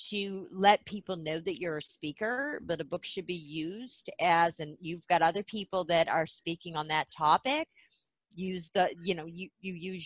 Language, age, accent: English, 40-59, American